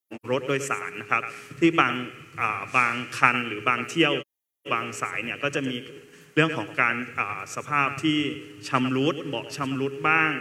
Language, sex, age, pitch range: Thai, male, 20-39, 120-145 Hz